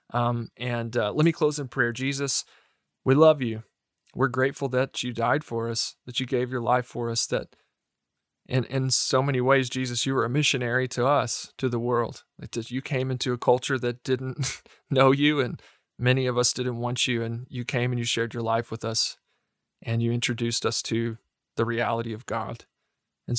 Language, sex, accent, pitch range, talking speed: English, male, American, 115-130 Hz, 205 wpm